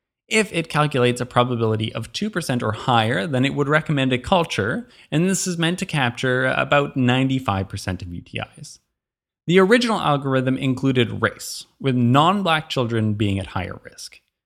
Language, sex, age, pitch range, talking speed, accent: English, male, 20-39, 120-170 Hz, 160 wpm, American